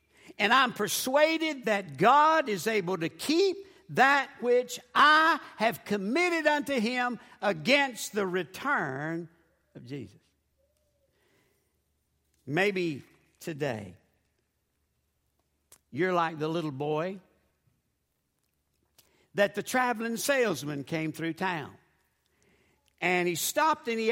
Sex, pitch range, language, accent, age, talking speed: male, 160-270 Hz, English, American, 60-79, 100 wpm